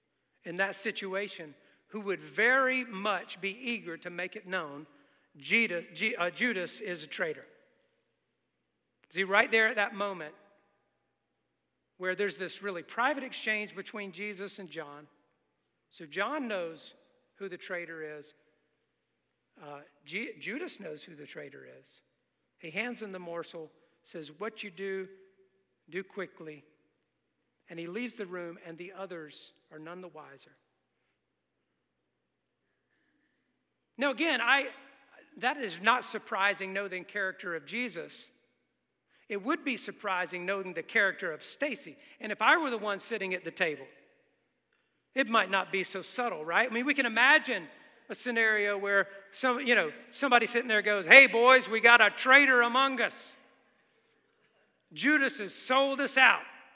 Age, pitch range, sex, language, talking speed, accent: 50-69, 175-235 Hz, male, English, 145 wpm, American